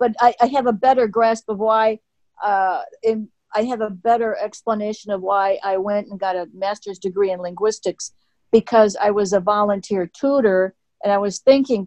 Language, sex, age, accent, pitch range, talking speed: English, female, 50-69, American, 195-220 Hz, 185 wpm